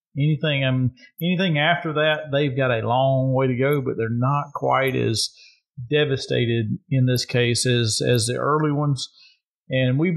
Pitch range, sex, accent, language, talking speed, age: 125-155 Hz, male, American, English, 175 wpm, 40-59